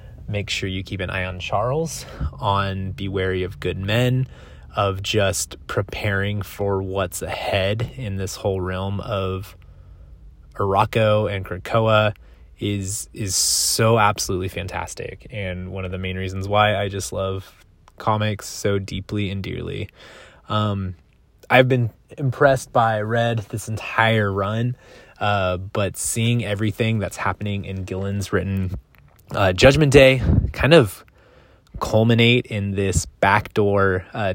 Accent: American